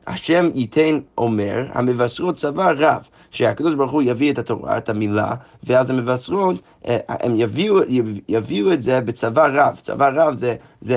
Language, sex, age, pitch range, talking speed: Hebrew, male, 30-49, 120-150 Hz, 155 wpm